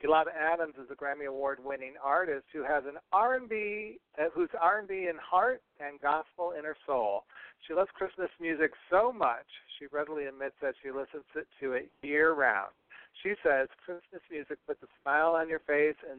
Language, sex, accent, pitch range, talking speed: English, male, American, 130-160 Hz, 170 wpm